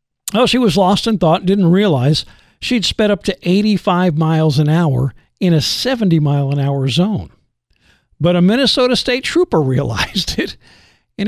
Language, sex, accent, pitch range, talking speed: English, male, American, 155-205 Hz, 155 wpm